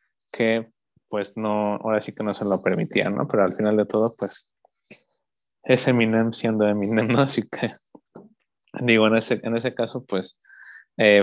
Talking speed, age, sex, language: 170 wpm, 20-39, male, Spanish